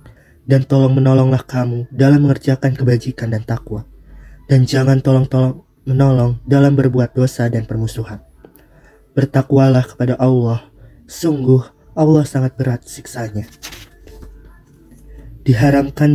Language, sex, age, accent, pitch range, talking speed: Indonesian, male, 20-39, native, 120-140 Hz, 100 wpm